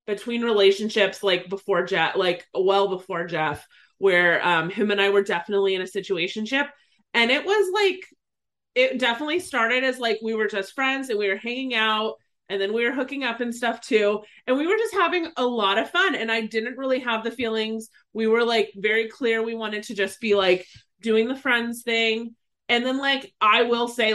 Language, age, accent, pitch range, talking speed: English, 30-49, American, 195-240 Hz, 205 wpm